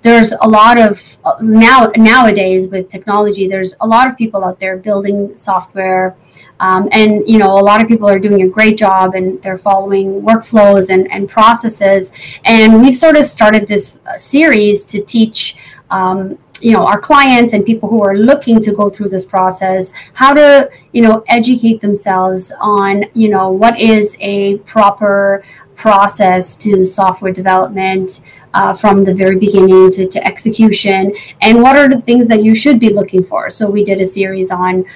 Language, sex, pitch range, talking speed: English, female, 190-225 Hz, 175 wpm